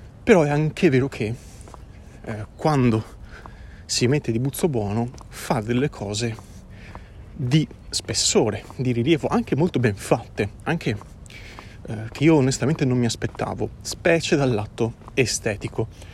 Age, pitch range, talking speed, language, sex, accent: 30-49, 105-135 Hz, 130 wpm, Italian, male, native